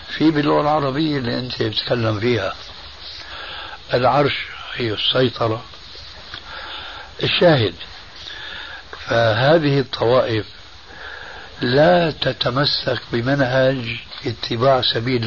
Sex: male